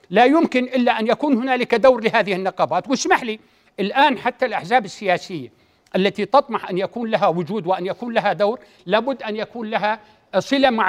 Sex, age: male, 60-79